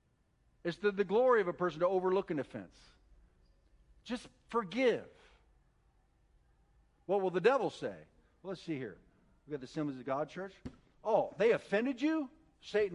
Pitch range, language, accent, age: 155-210 Hz, English, American, 50-69